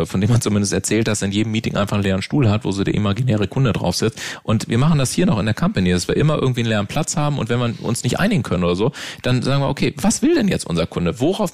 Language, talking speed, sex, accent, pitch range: German, 305 wpm, male, German, 105-130 Hz